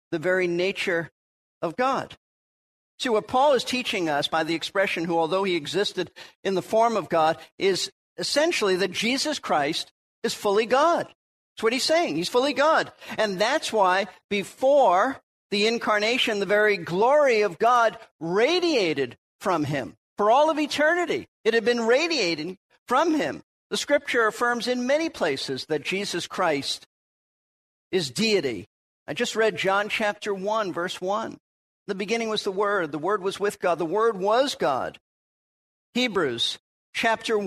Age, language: 50-69, English